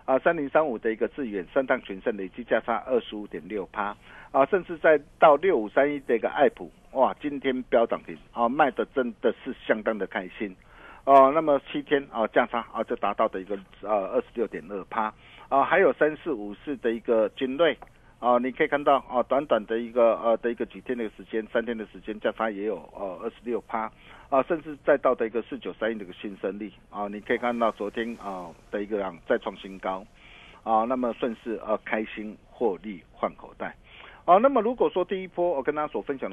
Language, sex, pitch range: Chinese, male, 110-150 Hz